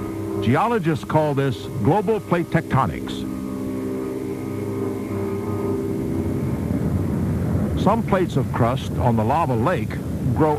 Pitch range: 105-180 Hz